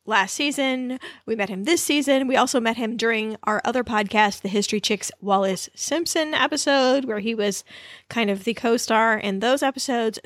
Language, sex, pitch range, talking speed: English, female, 215-285 Hz, 180 wpm